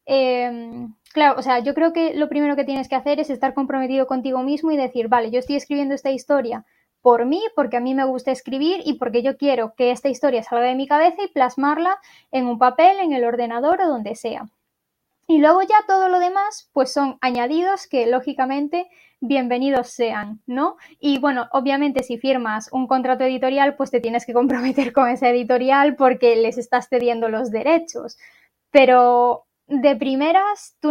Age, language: 10-29, Spanish